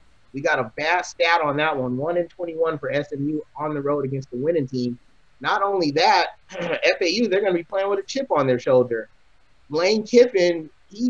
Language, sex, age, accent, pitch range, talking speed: English, male, 30-49, American, 150-190 Hz, 200 wpm